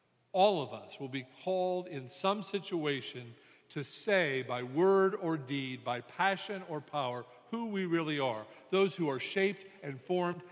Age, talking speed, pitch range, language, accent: 50-69, 165 wpm, 130-185 Hz, English, American